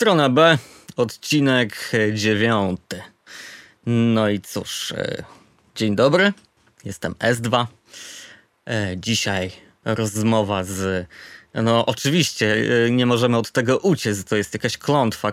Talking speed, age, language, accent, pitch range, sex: 100 wpm, 20-39, Polish, native, 105-125 Hz, male